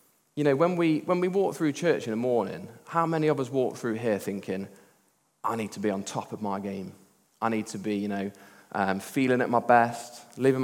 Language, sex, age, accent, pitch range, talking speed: English, male, 20-39, British, 110-135 Hz, 230 wpm